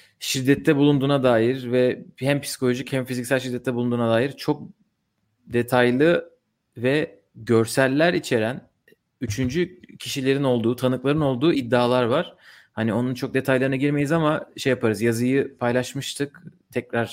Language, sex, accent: Turkish, male, native